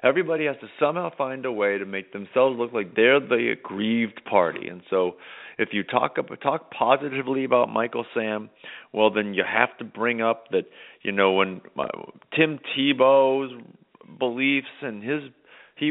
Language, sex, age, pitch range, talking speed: English, male, 40-59, 105-135 Hz, 160 wpm